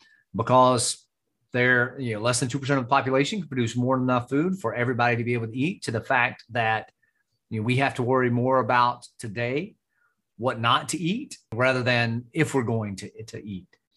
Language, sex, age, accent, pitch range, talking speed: English, male, 30-49, American, 115-140 Hz, 205 wpm